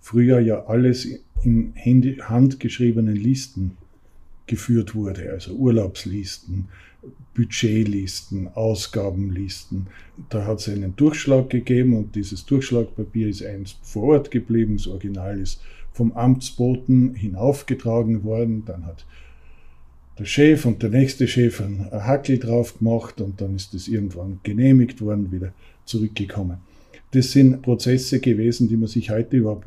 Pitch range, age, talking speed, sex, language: 100-125 Hz, 50-69, 125 wpm, male, German